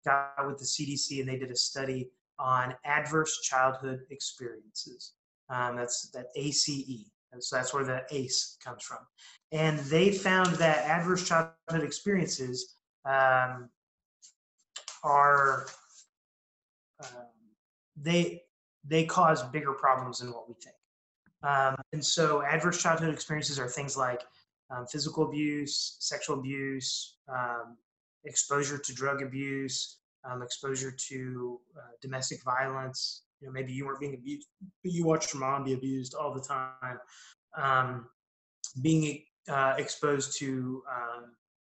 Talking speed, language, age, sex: 130 wpm, English, 30-49, male